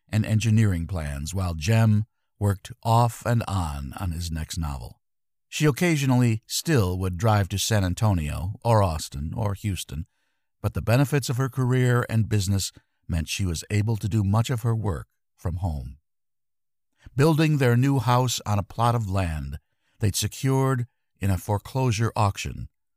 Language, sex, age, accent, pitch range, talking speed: English, male, 50-69, American, 90-120 Hz, 155 wpm